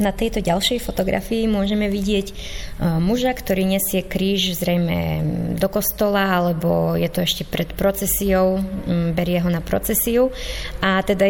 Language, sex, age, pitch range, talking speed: Slovak, female, 20-39, 180-200 Hz, 135 wpm